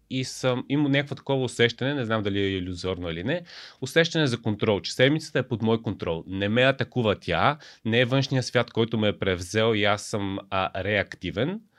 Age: 30-49